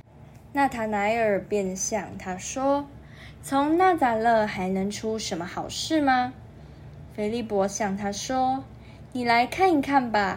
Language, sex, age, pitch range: Chinese, female, 10-29, 195-260 Hz